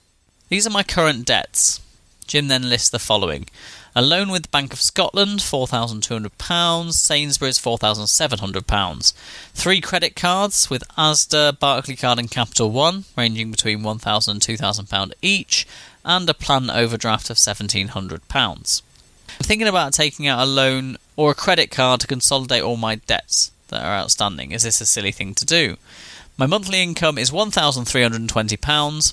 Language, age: English, 30-49